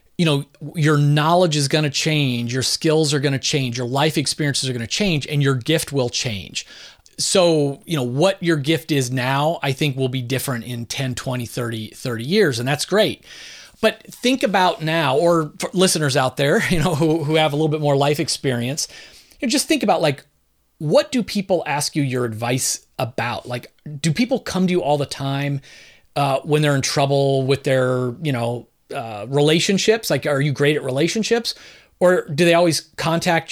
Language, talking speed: English, 195 wpm